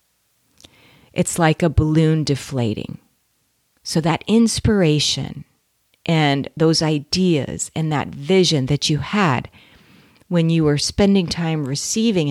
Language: English